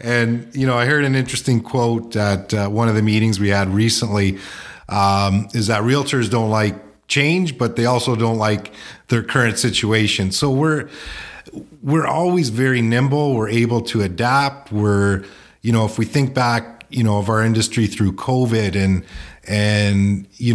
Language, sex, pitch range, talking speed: English, male, 105-125 Hz, 170 wpm